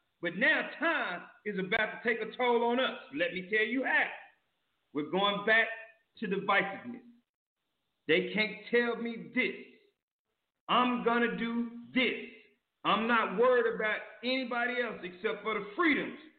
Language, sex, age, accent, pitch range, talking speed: English, male, 40-59, American, 210-300 Hz, 150 wpm